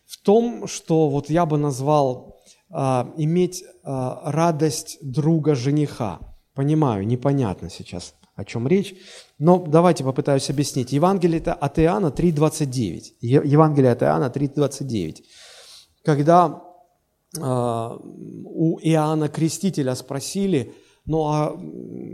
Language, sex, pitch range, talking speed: Russian, male, 140-195 Hz, 100 wpm